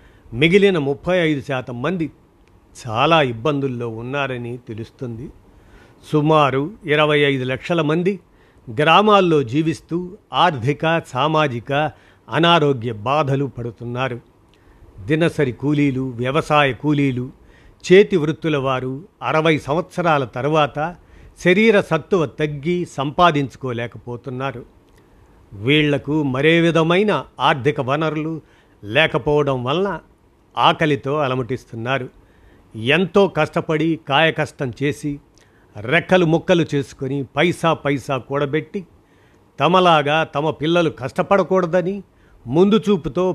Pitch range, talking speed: 130-165 Hz, 80 wpm